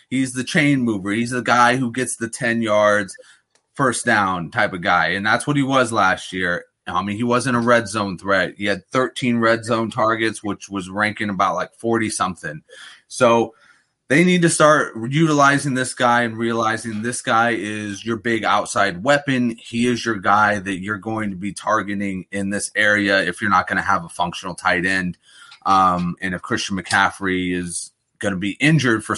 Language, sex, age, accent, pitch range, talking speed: English, male, 30-49, American, 100-135 Hz, 195 wpm